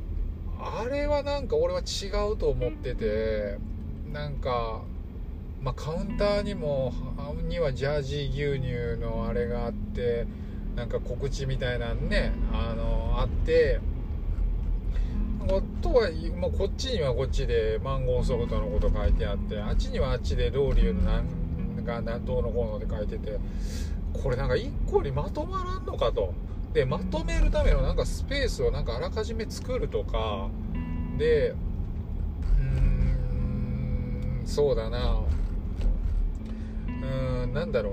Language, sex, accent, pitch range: Japanese, male, native, 80-125 Hz